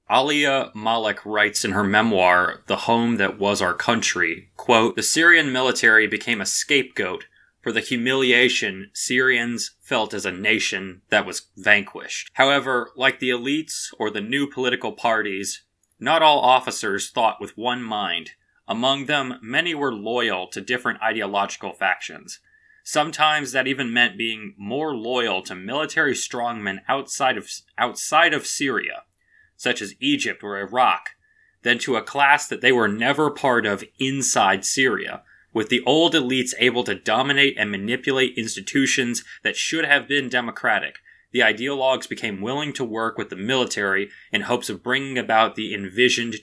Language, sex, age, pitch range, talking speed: English, male, 20-39, 110-140 Hz, 155 wpm